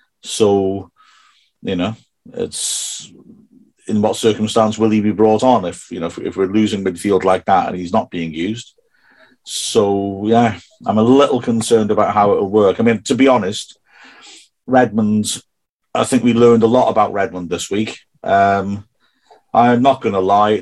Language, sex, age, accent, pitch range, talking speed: English, male, 40-59, British, 95-120 Hz, 170 wpm